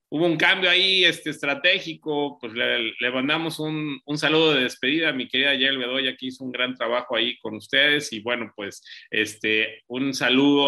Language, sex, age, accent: Spanish, male, 30-49, Mexican